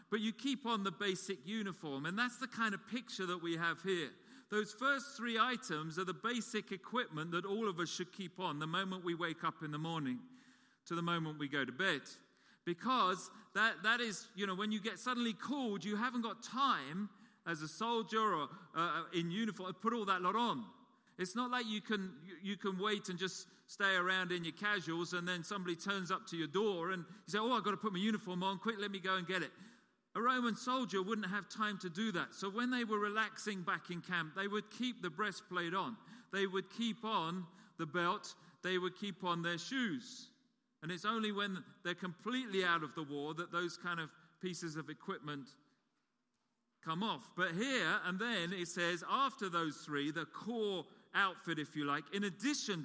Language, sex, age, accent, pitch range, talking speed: English, male, 40-59, British, 175-220 Hz, 210 wpm